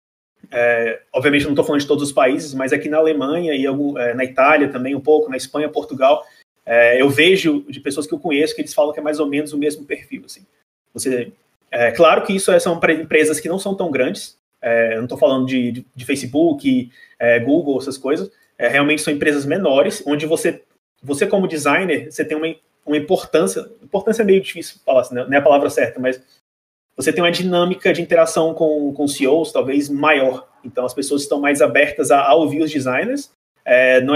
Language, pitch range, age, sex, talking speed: Portuguese, 140-165 Hz, 20-39, male, 215 wpm